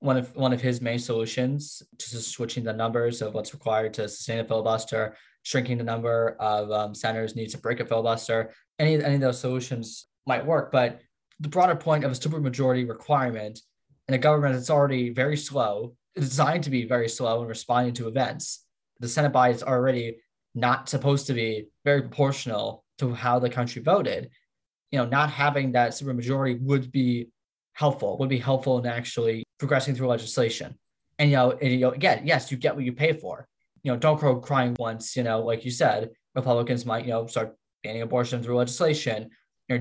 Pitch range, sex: 115-140 Hz, male